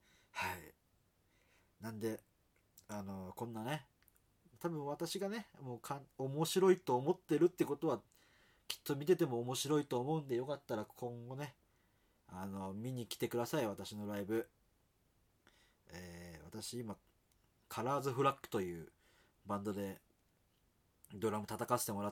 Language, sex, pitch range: Japanese, male, 95-130 Hz